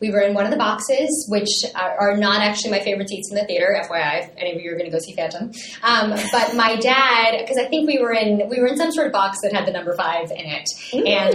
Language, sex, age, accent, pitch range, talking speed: English, female, 20-39, American, 190-245 Hz, 285 wpm